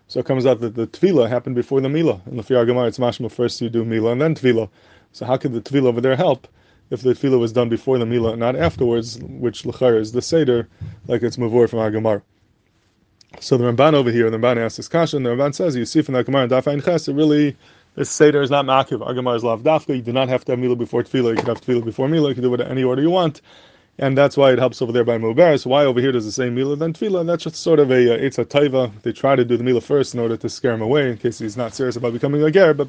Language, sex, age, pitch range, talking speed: English, male, 20-39, 120-145 Hz, 295 wpm